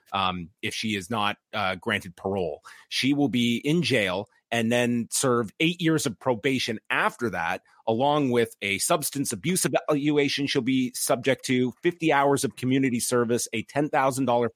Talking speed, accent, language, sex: 160 wpm, American, English, male